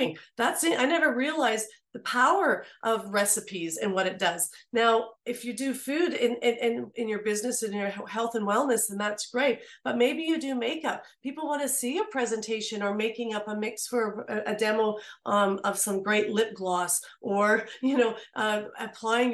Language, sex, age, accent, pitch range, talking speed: English, female, 40-59, American, 215-260 Hz, 200 wpm